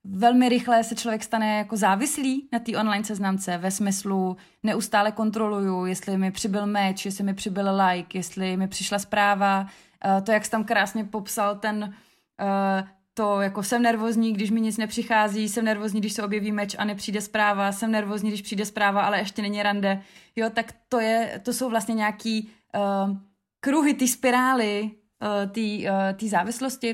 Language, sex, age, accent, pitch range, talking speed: Czech, female, 20-39, native, 195-215 Hz, 165 wpm